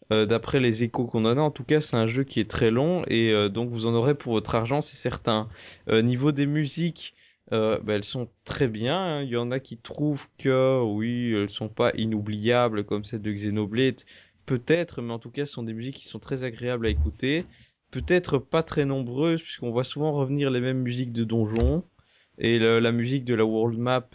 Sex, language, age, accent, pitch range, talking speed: male, French, 20-39, French, 115-150 Hz, 230 wpm